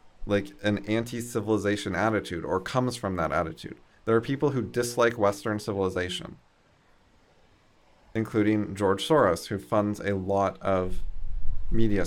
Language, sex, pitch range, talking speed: English, male, 95-115 Hz, 125 wpm